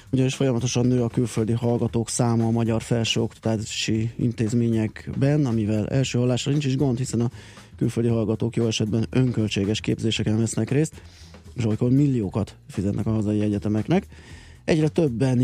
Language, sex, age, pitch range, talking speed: Hungarian, male, 20-39, 105-125 Hz, 140 wpm